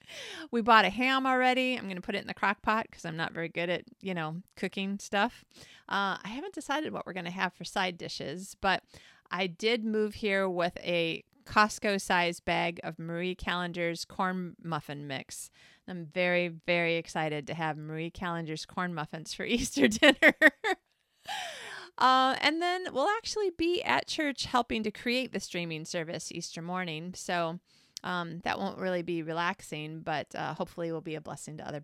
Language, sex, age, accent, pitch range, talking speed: English, female, 30-49, American, 175-250 Hz, 185 wpm